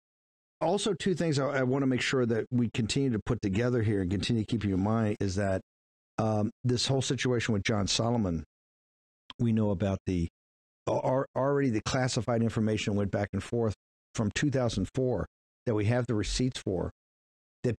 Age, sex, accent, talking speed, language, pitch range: 50-69, male, American, 175 wpm, English, 105-135 Hz